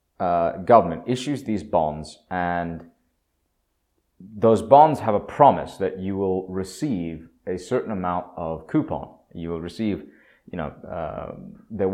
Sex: male